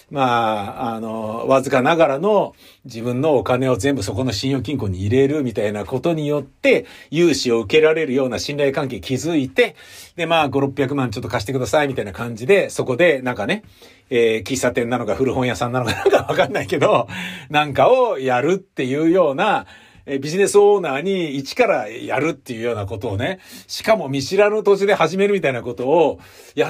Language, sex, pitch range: Japanese, male, 125-200 Hz